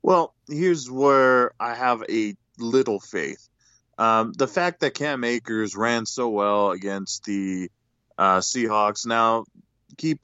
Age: 20-39